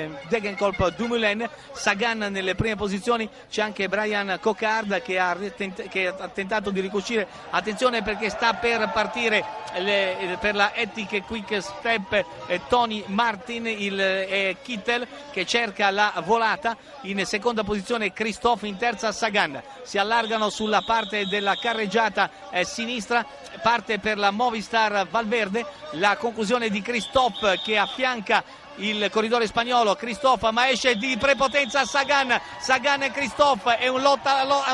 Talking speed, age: 135 wpm, 50-69